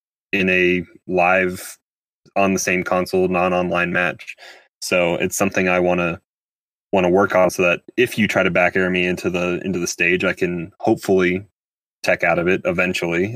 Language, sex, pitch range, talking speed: English, male, 90-95 Hz, 190 wpm